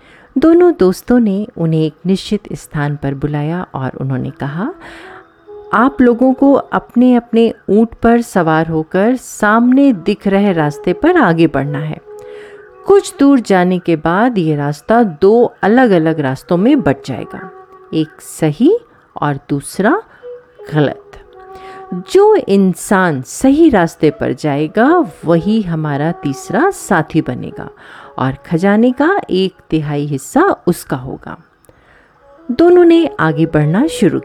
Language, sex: Hindi, female